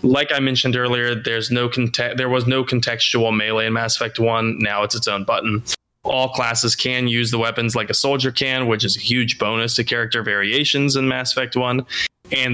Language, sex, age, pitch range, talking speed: English, male, 20-39, 115-130 Hz, 210 wpm